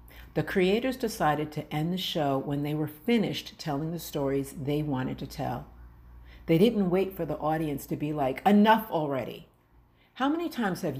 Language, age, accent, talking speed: English, 50-69, American, 180 wpm